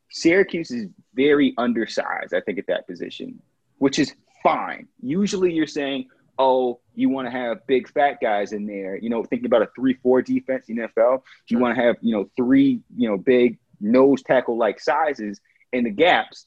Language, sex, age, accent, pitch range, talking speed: English, male, 30-49, American, 125-190 Hz, 190 wpm